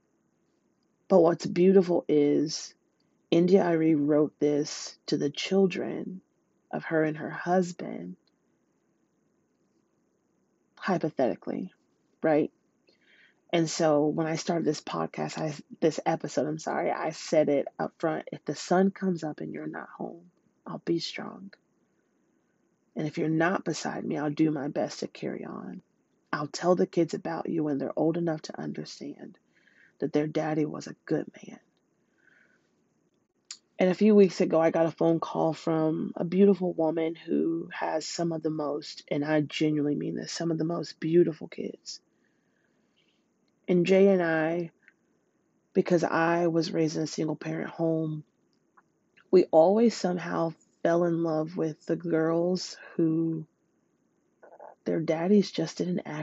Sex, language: female, English